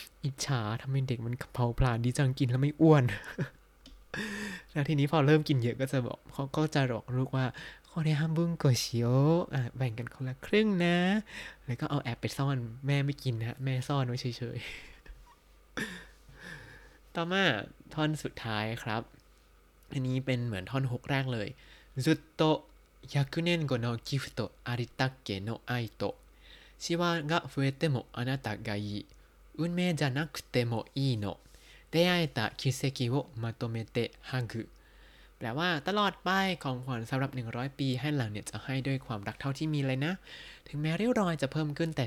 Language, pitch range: Thai, 120-155 Hz